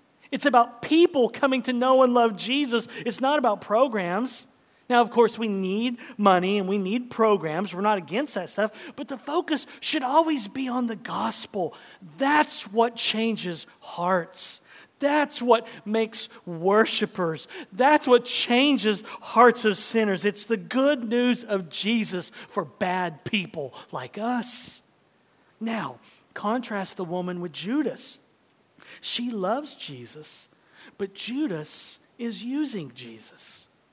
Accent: American